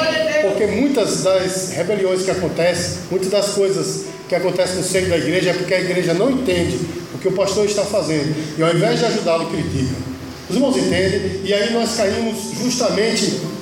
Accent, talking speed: Brazilian, 180 wpm